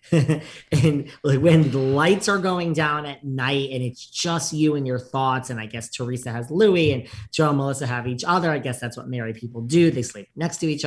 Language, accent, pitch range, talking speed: English, American, 125-155 Hz, 225 wpm